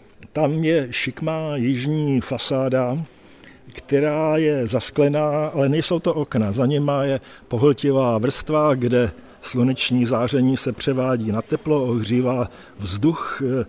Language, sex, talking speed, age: Czech, male, 115 wpm, 50-69